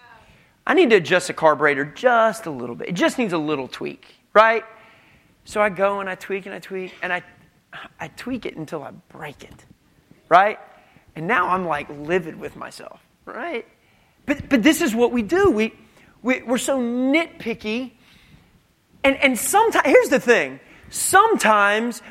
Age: 30-49